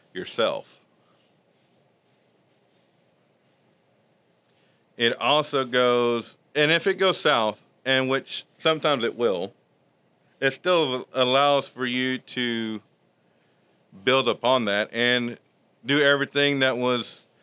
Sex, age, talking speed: male, 40-59, 95 wpm